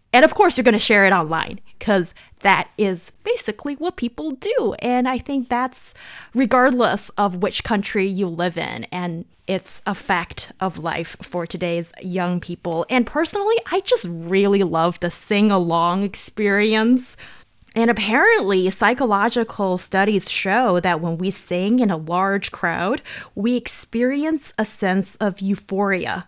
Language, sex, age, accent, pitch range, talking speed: English, female, 20-39, American, 185-245 Hz, 150 wpm